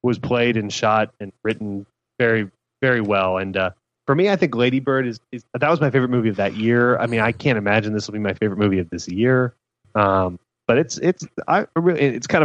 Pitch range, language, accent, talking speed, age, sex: 100-120 Hz, English, American, 235 wpm, 30-49, male